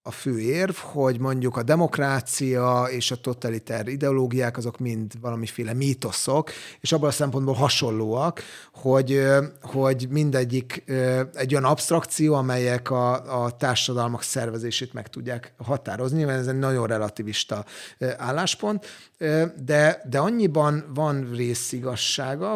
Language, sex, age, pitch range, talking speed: Hungarian, male, 30-49, 125-145 Hz, 120 wpm